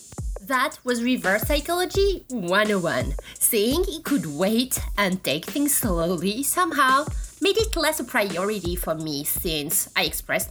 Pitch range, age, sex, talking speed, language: 180-280 Hz, 30-49, female, 135 wpm, English